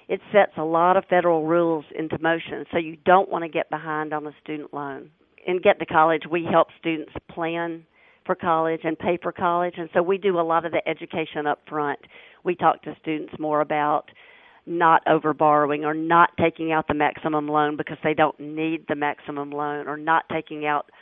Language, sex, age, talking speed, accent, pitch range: English, female, 50-69, 205 wpm, American, 155-190 Hz